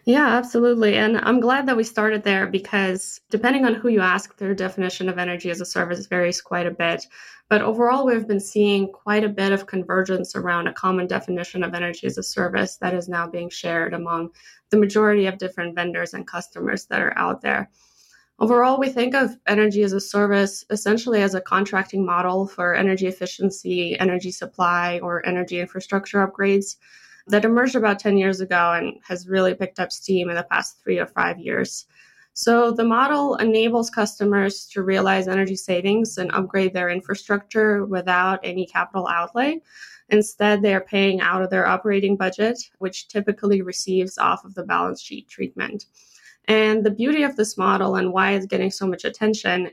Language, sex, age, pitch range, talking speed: English, female, 20-39, 185-215 Hz, 180 wpm